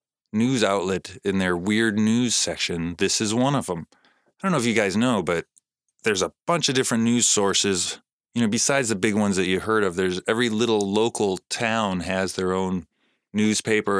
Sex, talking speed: male, 195 wpm